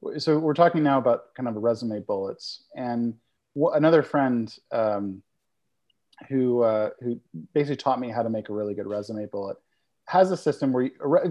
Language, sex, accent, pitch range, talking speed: English, male, American, 120-165 Hz, 175 wpm